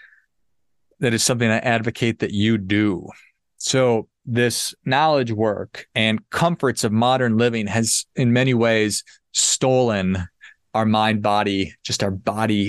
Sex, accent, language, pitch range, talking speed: male, American, English, 110-140 Hz, 130 wpm